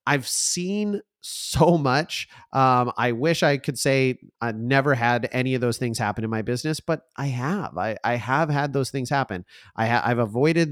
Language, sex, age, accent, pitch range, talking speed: English, male, 30-49, American, 120-155 Hz, 195 wpm